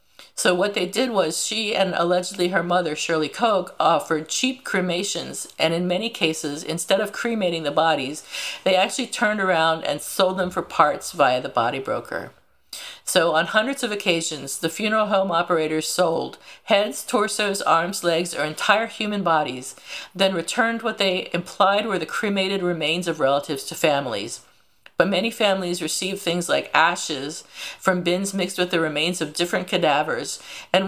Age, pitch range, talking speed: 50-69, 165-210 Hz, 165 wpm